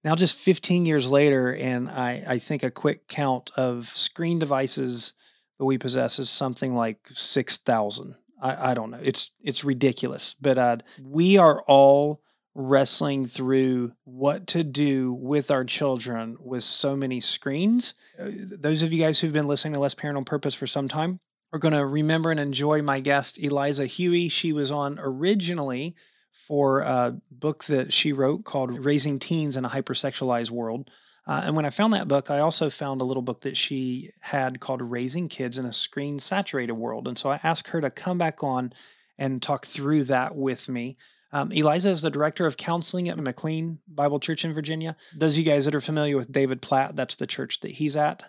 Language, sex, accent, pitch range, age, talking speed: English, male, American, 130-160 Hz, 30-49, 195 wpm